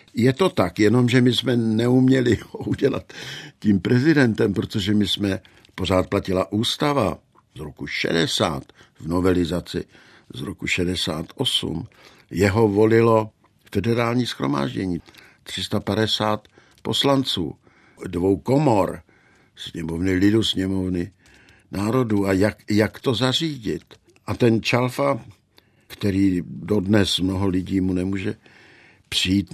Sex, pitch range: male, 95-115 Hz